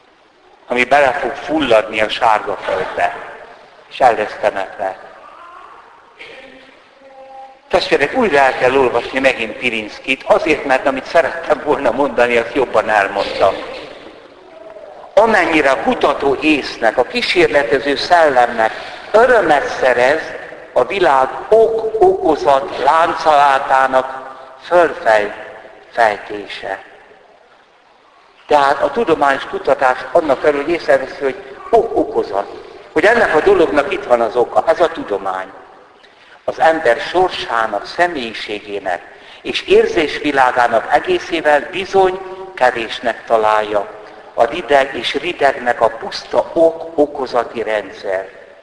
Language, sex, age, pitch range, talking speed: Hungarian, male, 60-79, 115-175 Hz, 95 wpm